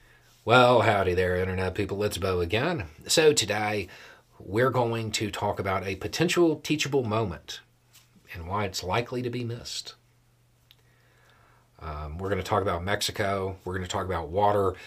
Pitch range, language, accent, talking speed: 95-120 Hz, English, American, 155 wpm